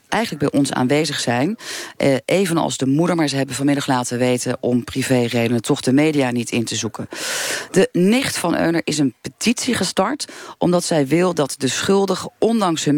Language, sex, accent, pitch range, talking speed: Dutch, female, Dutch, 125-165 Hz, 185 wpm